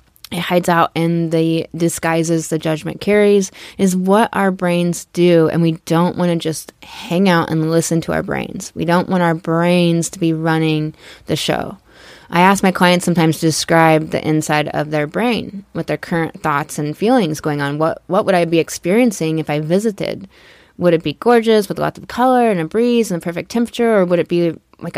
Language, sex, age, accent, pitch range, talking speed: English, female, 20-39, American, 165-215 Hz, 205 wpm